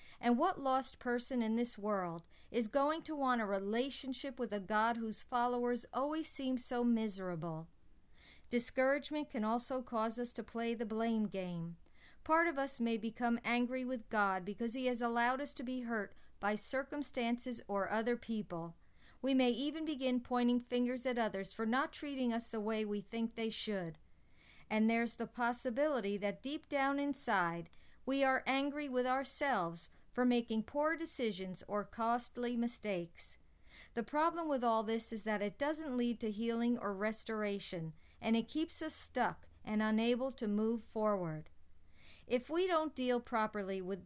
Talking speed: 165 wpm